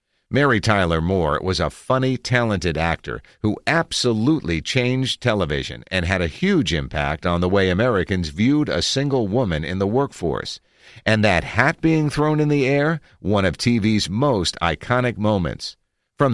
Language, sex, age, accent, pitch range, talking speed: English, male, 50-69, American, 85-125 Hz, 160 wpm